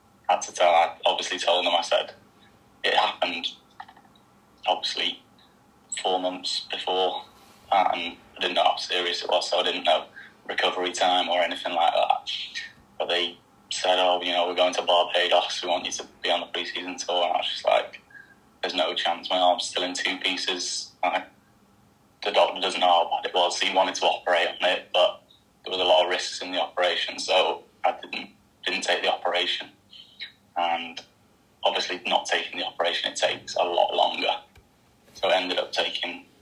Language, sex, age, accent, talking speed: English, male, 20-39, British, 190 wpm